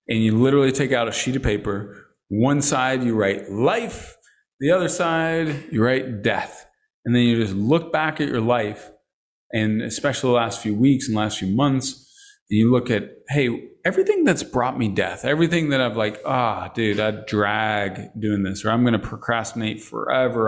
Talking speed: 195 wpm